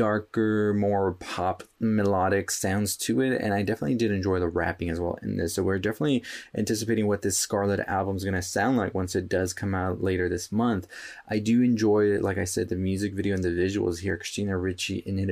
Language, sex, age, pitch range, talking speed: English, male, 20-39, 95-110 Hz, 225 wpm